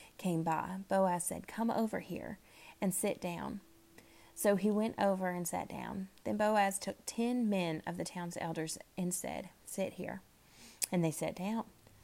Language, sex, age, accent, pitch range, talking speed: English, female, 30-49, American, 175-205 Hz, 170 wpm